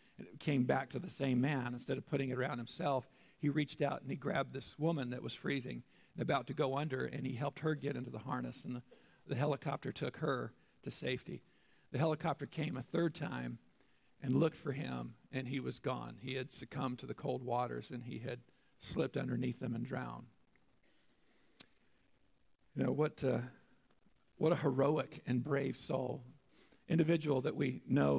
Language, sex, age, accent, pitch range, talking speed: English, male, 50-69, American, 125-150 Hz, 185 wpm